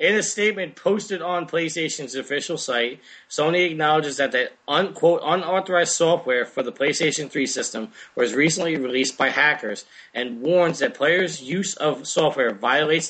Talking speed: 150 wpm